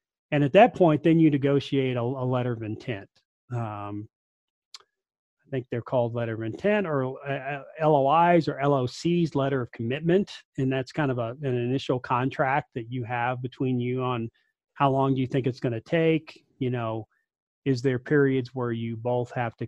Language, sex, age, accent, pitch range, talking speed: English, male, 40-59, American, 120-145 Hz, 185 wpm